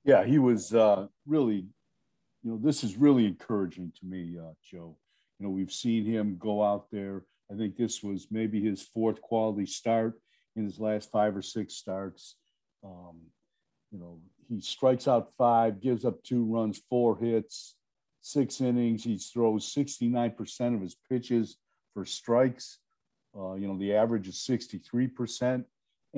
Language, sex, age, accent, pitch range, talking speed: English, male, 50-69, American, 100-120 Hz, 160 wpm